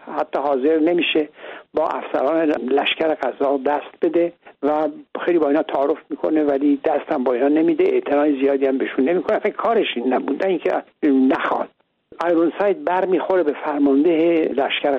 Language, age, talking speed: Persian, 60-79, 145 wpm